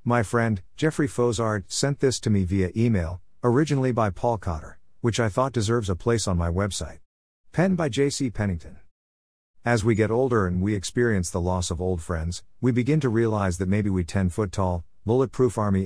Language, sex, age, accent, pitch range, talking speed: English, male, 50-69, American, 90-125 Hz, 185 wpm